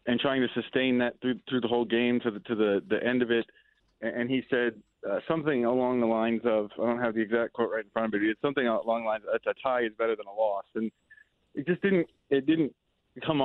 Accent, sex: American, male